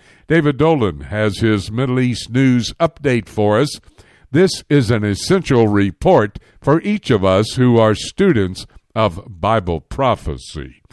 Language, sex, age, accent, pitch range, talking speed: English, male, 60-79, American, 105-150 Hz, 135 wpm